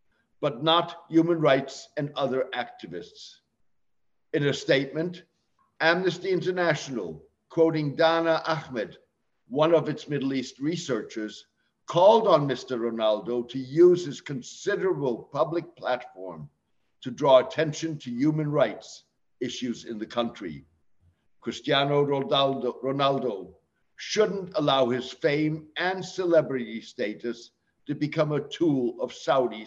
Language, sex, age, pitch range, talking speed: English, male, 60-79, 125-165 Hz, 115 wpm